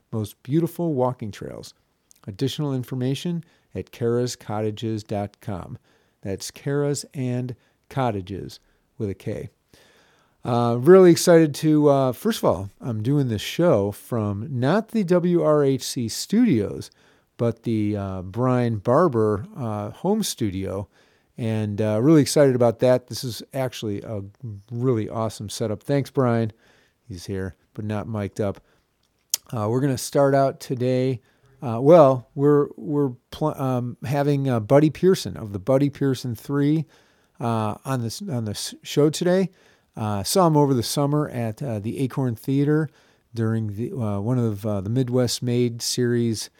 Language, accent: English, American